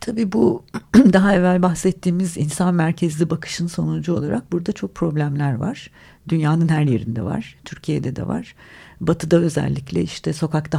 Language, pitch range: Turkish, 125-165 Hz